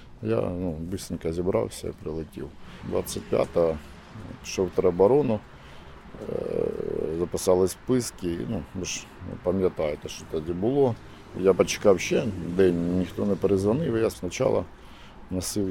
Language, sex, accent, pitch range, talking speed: Ukrainian, male, native, 85-105 Hz, 110 wpm